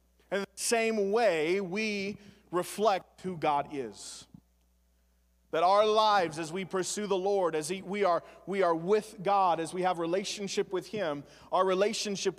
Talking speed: 160 wpm